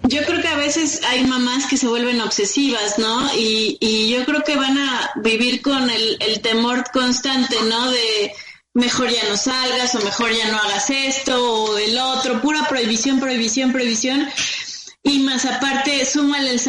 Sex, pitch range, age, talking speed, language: female, 230-280 Hz, 30-49, 175 wpm, Spanish